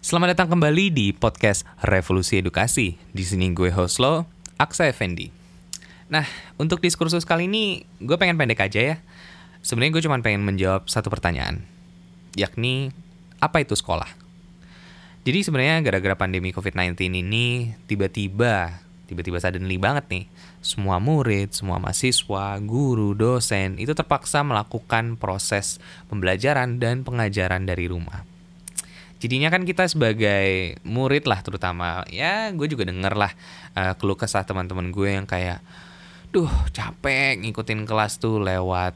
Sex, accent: male, native